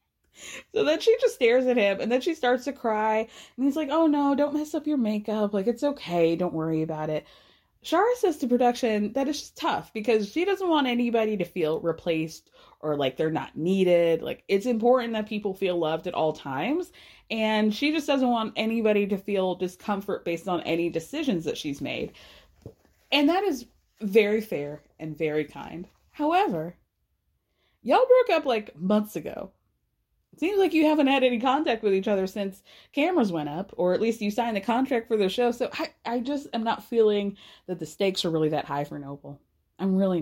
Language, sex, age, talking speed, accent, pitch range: English, female, 20-39, 200 wpm, American, 185-275 Hz